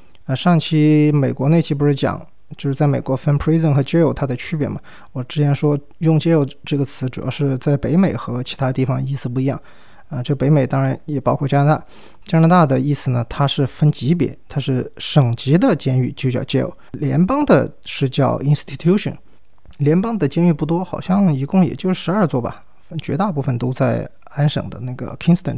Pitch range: 130-165 Hz